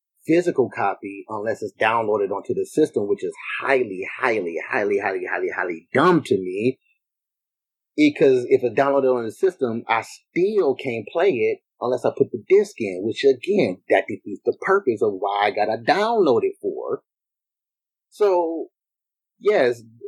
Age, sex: 30-49, male